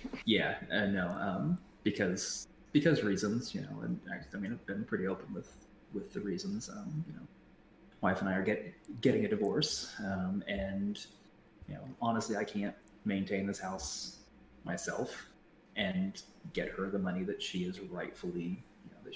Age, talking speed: 30-49, 170 wpm